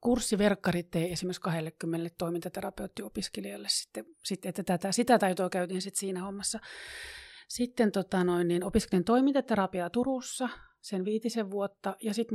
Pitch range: 180-210 Hz